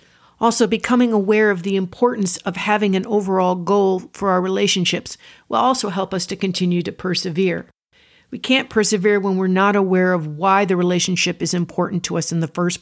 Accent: American